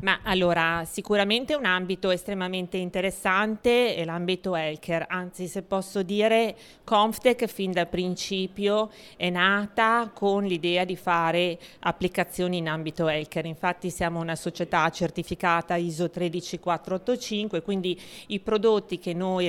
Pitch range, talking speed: 175-215 Hz, 125 wpm